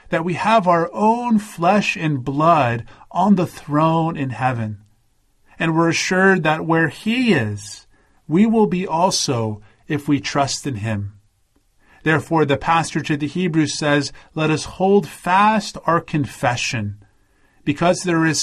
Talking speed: 145 wpm